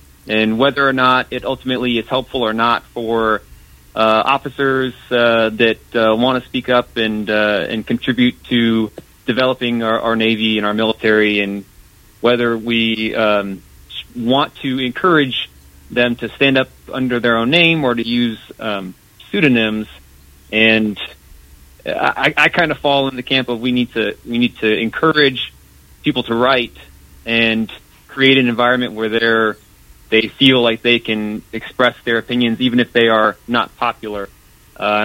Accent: American